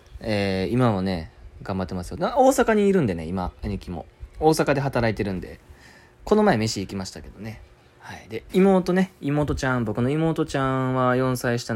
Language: Japanese